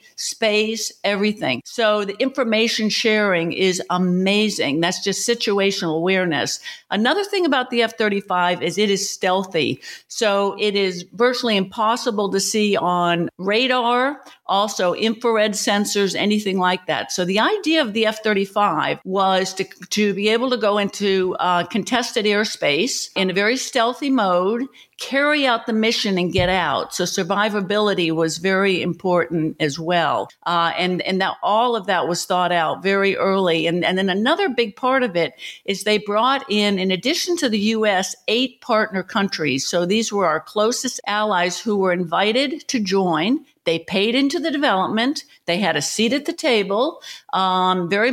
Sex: female